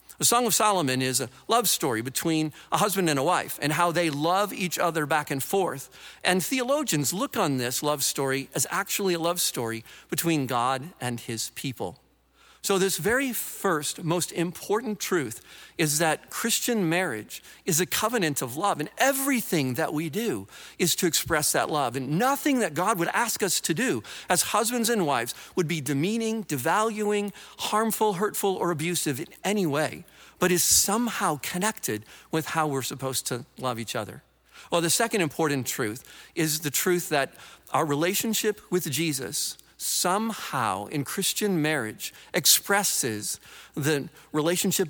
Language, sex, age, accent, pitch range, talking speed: English, male, 50-69, American, 140-195 Hz, 165 wpm